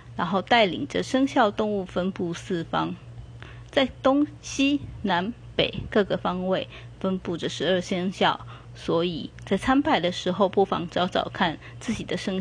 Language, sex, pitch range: Chinese, female, 165-210 Hz